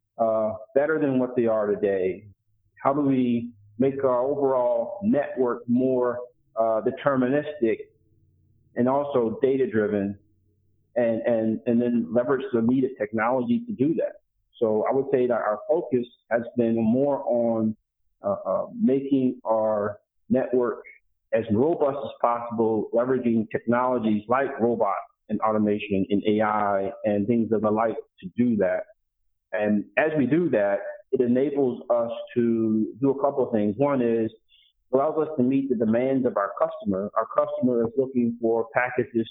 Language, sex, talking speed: English, male, 155 wpm